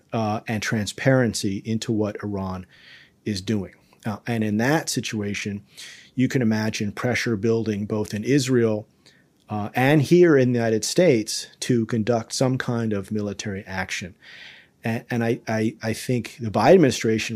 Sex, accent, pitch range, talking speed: male, American, 100-115 Hz, 150 wpm